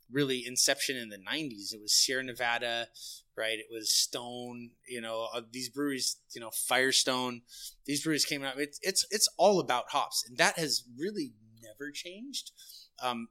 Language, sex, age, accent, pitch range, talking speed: English, male, 30-49, American, 120-140 Hz, 165 wpm